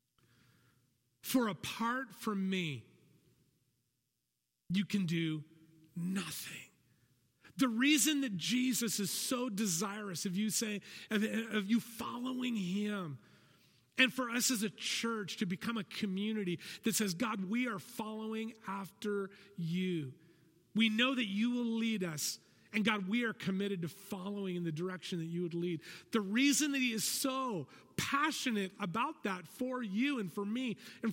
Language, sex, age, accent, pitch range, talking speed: English, male, 40-59, American, 175-250 Hz, 150 wpm